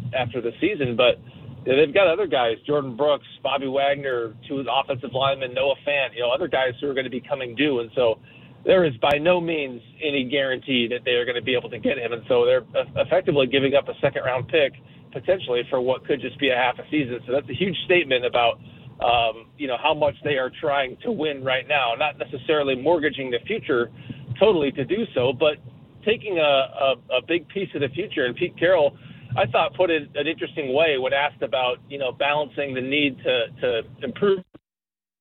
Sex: male